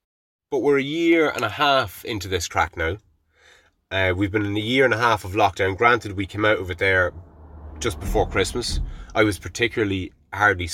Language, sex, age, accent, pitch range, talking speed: English, male, 30-49, Irish, 85-105 Hz, 200 wpm